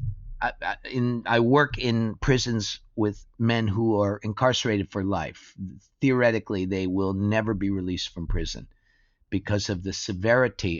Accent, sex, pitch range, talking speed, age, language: American, male, 95-120 Hz, 135 wpm, 50-69, Danish